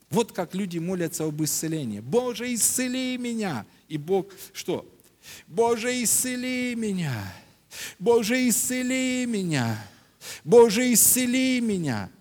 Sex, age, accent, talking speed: male, 50-69, native, 105 wpm